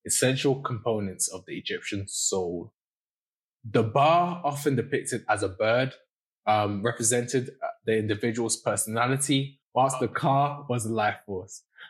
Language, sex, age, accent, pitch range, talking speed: English, male, 20-39, British, 105-135 Hz, 125 wpm